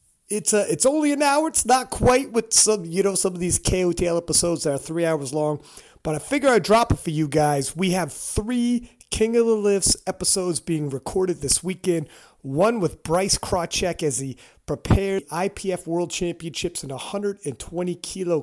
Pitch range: 155-210 Hz